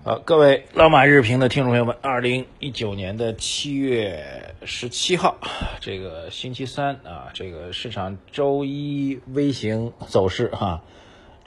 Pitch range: 95-120 Hz